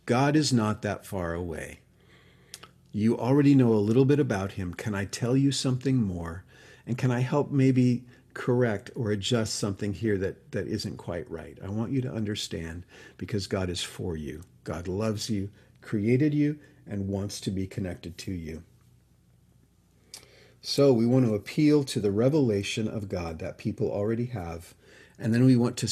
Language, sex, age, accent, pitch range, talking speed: English, male, 50-69, American, 95-125 Hz, 175 wpm